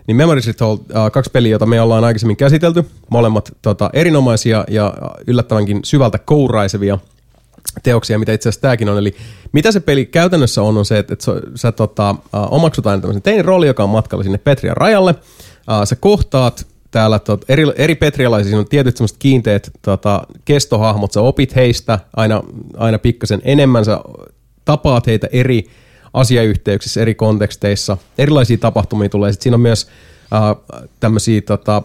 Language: Finnish